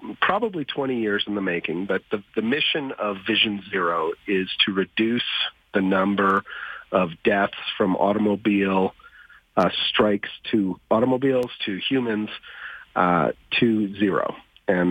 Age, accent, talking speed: 40-59, American, 130 wpm